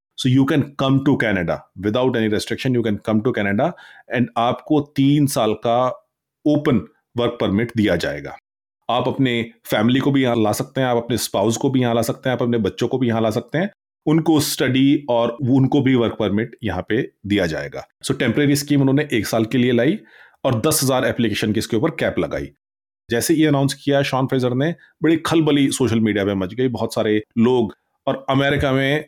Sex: male